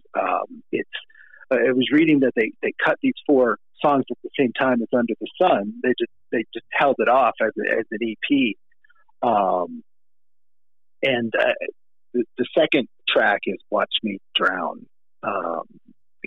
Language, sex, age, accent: English, male, 50-69, American